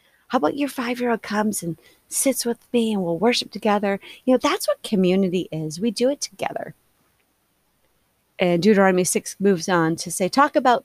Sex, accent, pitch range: female, American, 170-245 Hz